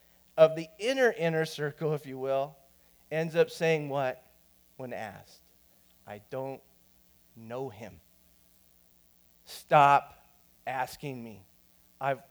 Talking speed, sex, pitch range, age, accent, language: 105 wpm, male, 130-175 Hz, 30-49, American, English